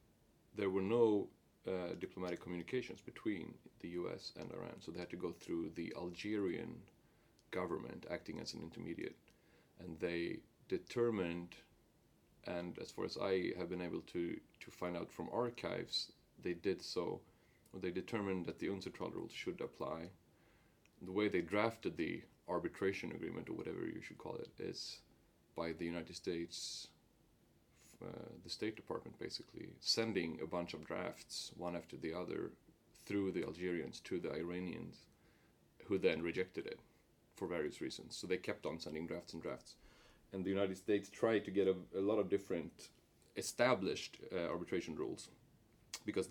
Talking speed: 160 wpm